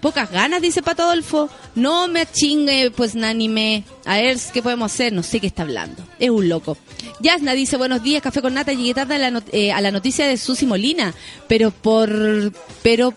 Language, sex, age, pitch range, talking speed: Spanish, female, 30-49, 215-300 Hz, 195 wpm